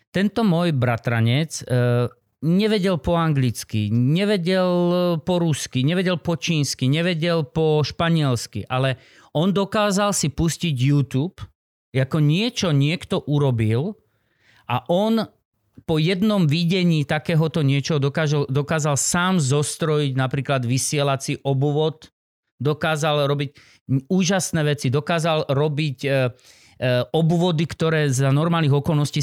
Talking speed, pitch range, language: 105 wpm, 135-170 Hz, Slovak